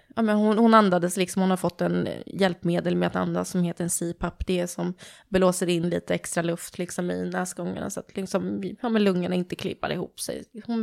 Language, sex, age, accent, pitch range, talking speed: Swedish, female, 20-39, native, 180-205 Hz, 210 wpm